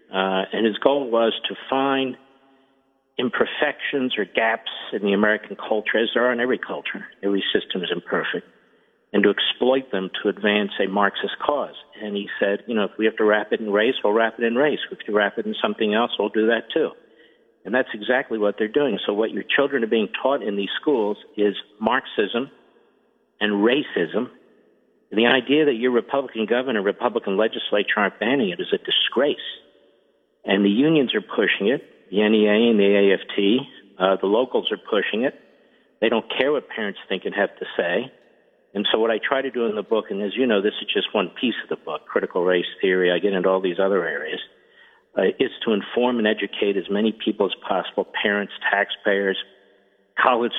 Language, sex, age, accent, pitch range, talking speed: English, male, 50-69, American, 100-130 Hz, 200 wpm